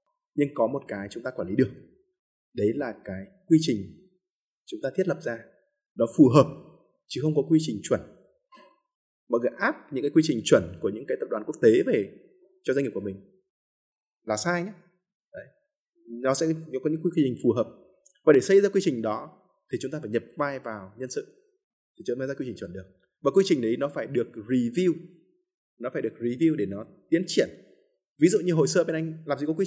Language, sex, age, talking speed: Vietnamese, male, 20-39, 225 wpm